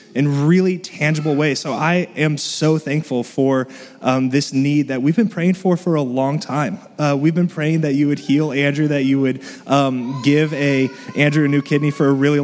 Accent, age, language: American, 20-39, English